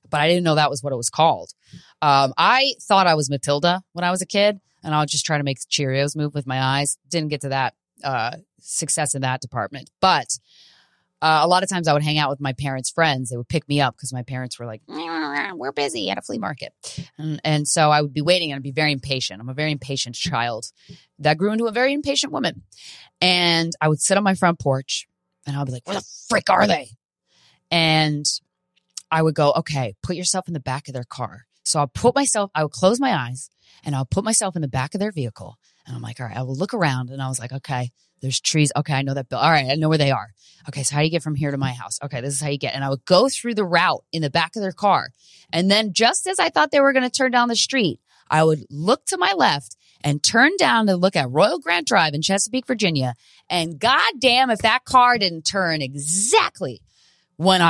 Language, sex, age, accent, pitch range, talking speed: English, female, 20-39, American, 135-185 Hz, 255 wpm